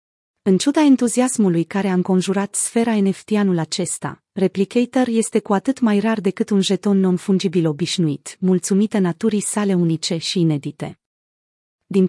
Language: Romanian